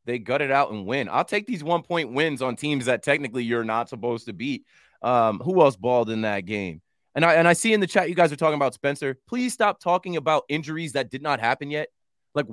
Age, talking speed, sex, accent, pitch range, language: 20-39, 250 wpm, male, American, 125-165 Hz, English